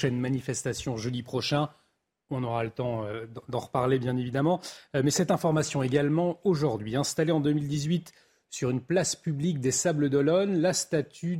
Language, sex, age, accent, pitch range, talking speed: French, male, 30-49, French, 130-175 Hz, 165 wpm